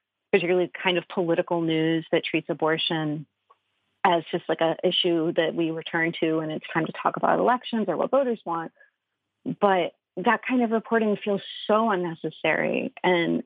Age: 30-49